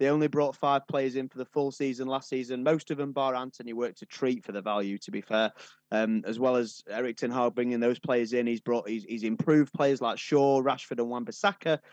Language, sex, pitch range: English, male, 110-135 Hz